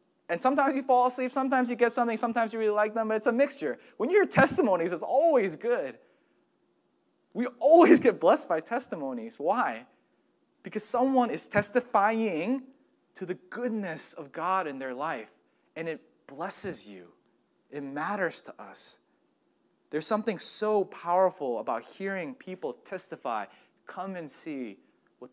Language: English